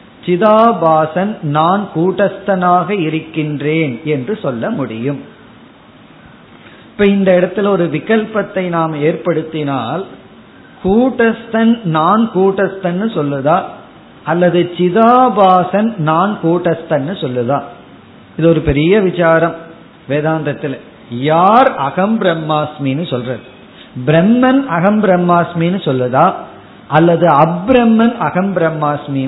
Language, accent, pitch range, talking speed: Tamil, native, 150-195 Hz, 80 wpm